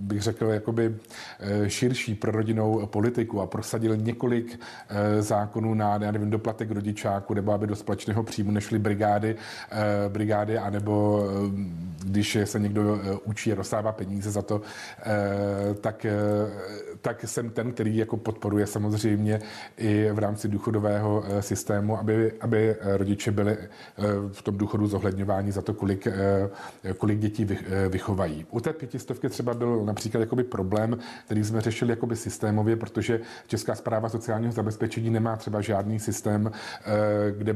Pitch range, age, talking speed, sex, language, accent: 105-110 Hz, 40-59, 125 wpm, male, Czech, native